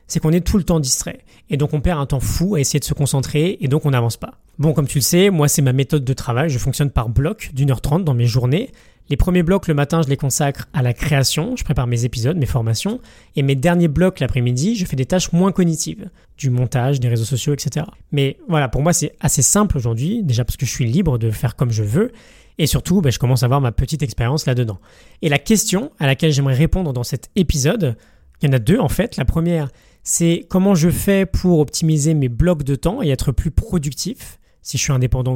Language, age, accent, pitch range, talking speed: French, 20-39, French, 130-170 Hz, 245 wpm